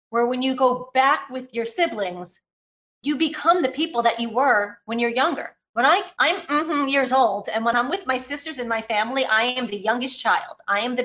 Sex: female